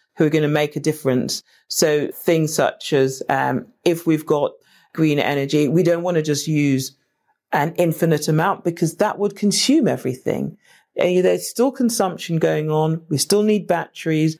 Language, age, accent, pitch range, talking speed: English, 40-59, British, 145-180 Hz, 165 wpm